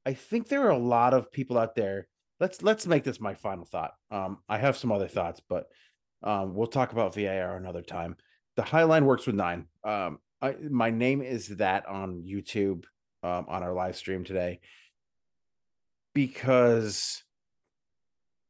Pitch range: 95-125 Hz